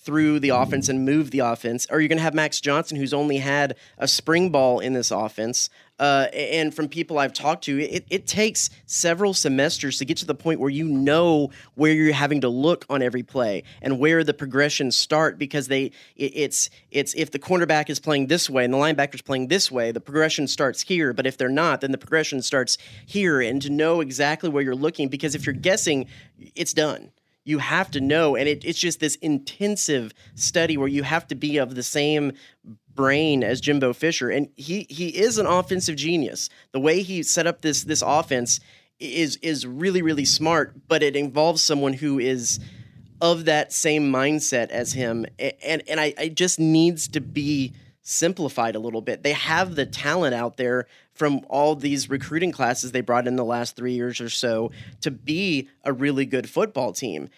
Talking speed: 205 wpm